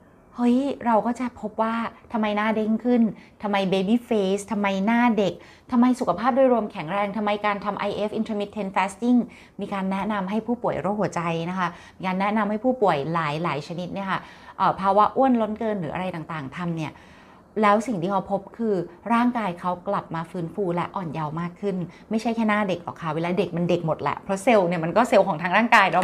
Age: 20-39